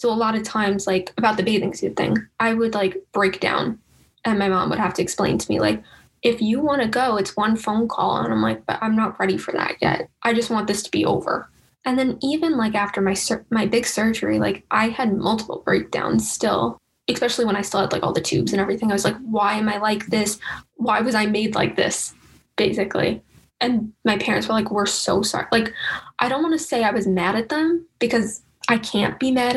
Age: 10-29